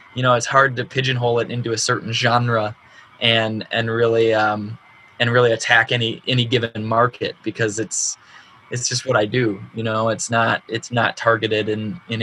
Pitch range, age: 110-125 Hz, 20-39